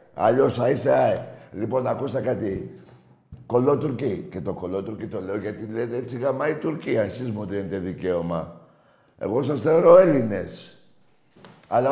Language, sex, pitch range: Greek, male, 115-180 Hz